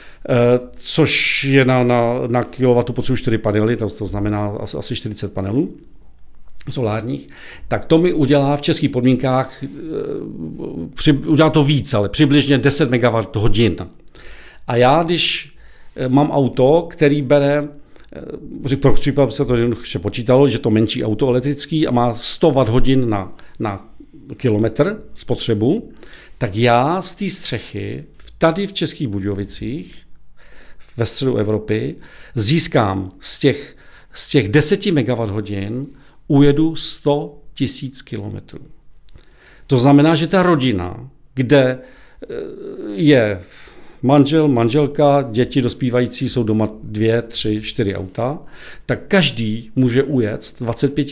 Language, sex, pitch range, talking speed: Czech, male, 115-145 Hz, 120 wpm